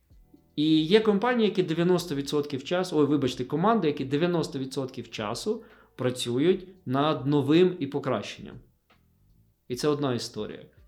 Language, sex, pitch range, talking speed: Ukrainian, male, 125-175 Hz, 115 wpm